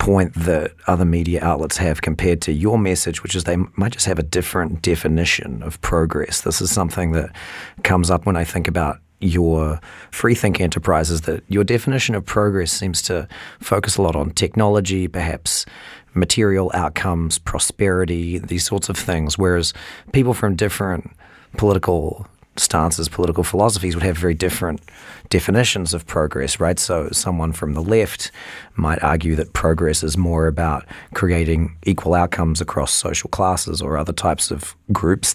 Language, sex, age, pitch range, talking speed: English, male, 40-59, 80-95 Hz, 160 wpm